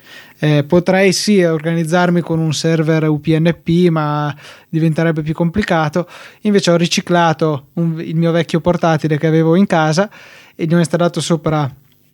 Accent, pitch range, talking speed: native, 155-180 Hz, 140 wpm